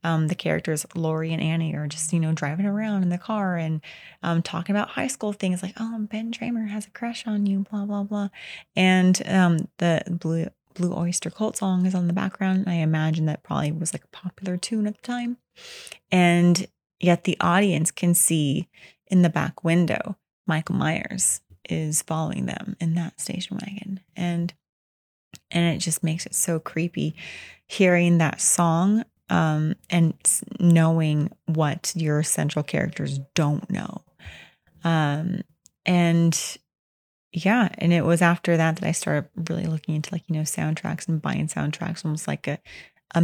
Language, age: English, 30-49